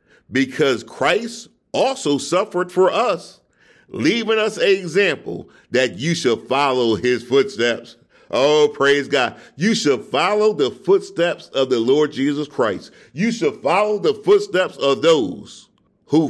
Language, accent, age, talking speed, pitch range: English, American, 50-69, 135 wpm, 130-200 Hz